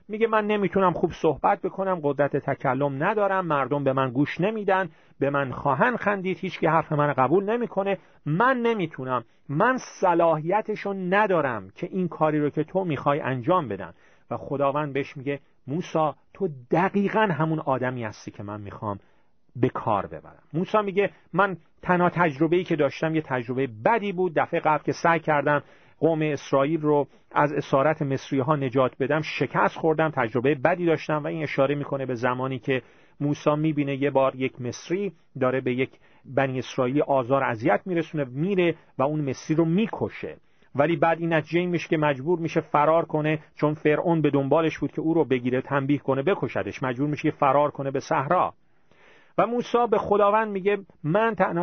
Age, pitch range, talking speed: 40-59, 140-185 Hz, 165 wpm